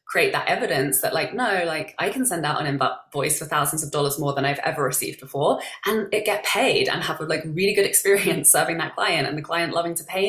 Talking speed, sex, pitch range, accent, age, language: 250 wpm, female, 145-175 Hz, British, 20-39, English